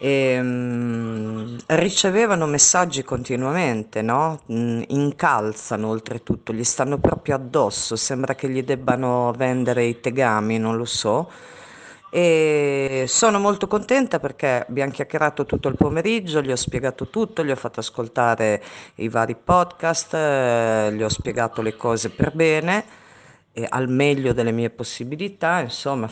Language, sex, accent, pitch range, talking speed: Italian, female, native, 120-155 Hz, 125 wpm